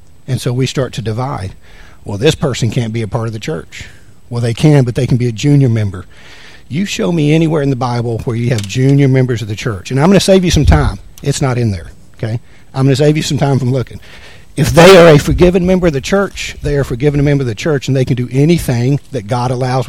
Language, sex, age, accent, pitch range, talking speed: English, male, 50-69, American, 110-140 Hz, 265 wpm